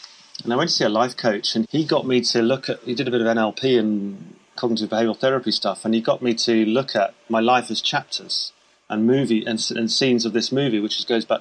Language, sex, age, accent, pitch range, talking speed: English, male, 30-49, British, 105-115 Hz, 260 wpm